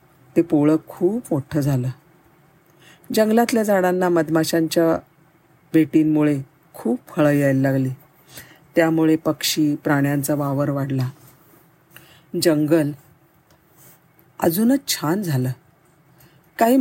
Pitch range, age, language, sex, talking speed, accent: 150-170 Hz, 50-69, Marathi, female, 60 wpm, native